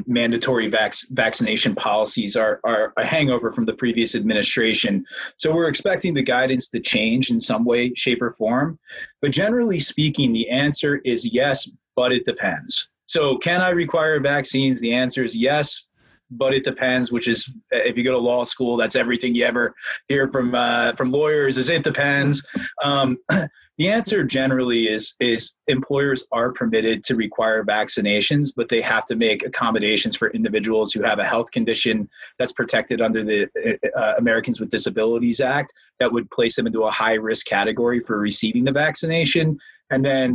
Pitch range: 115-135 Hz